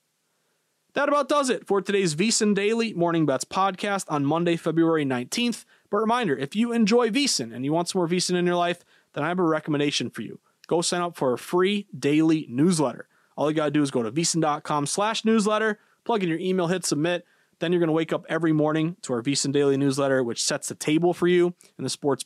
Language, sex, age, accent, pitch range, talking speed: English, male, 30-49, American, 140-180 Hz, 230 wpm